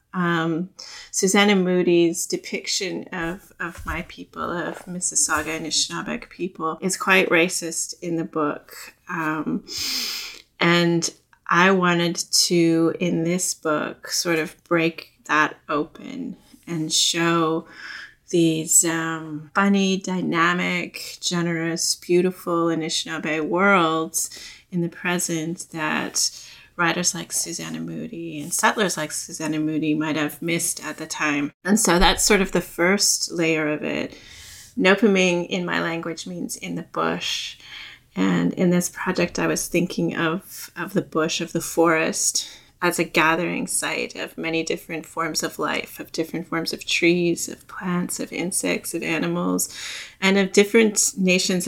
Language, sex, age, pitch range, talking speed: English, female, 30-49, 160-180 Hz, 135 wpm